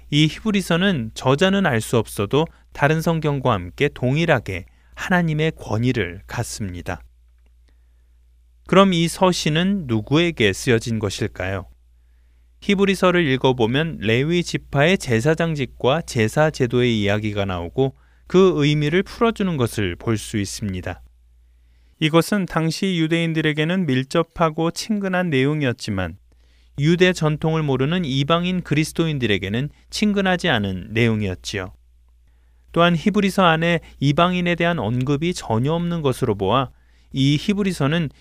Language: Korean